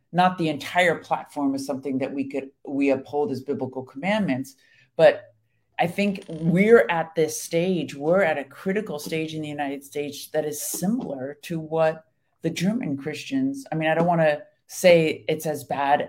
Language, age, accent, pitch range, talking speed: English, 50-69, American, 140-170 Hz, 180 wpm